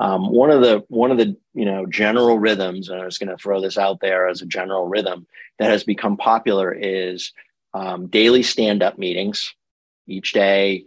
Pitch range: 95-110 Hz